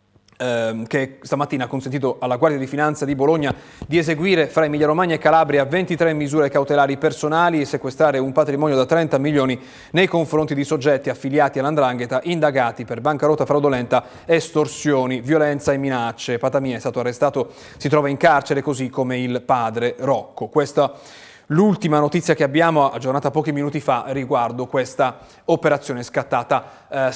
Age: 30-49